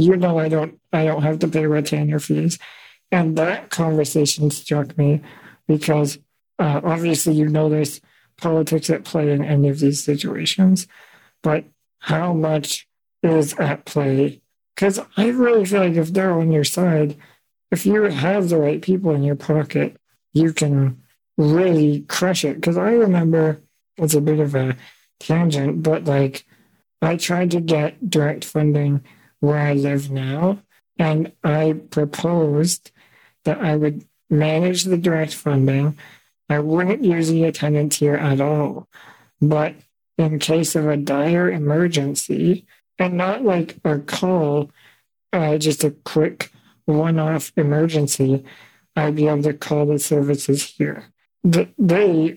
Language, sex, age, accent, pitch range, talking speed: English, male, 50-69, American, 145-170 Hz, 145 wpm